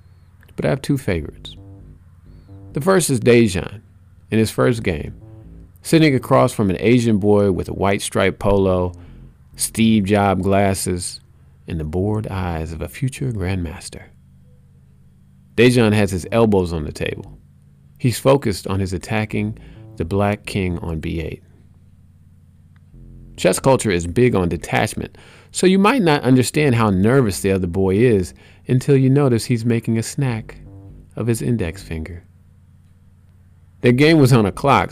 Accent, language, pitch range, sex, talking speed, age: American, English, 85-115 Hz, male, 150 wpm, 40-59